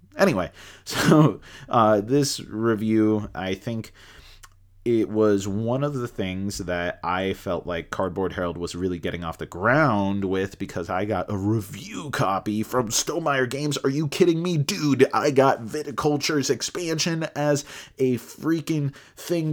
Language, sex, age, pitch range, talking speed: English, male, 30-49, 95-130 Hz, 150 wpm